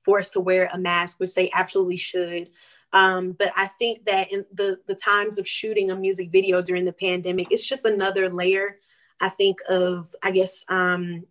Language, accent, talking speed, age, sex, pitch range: English, American, 190 wpm, 20-39, female, 180-200 Hz